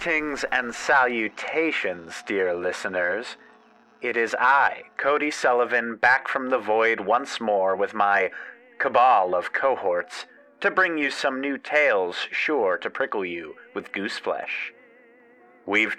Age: 30-49